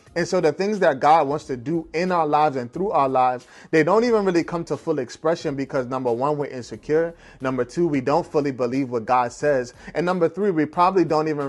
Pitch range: 140-190 Hz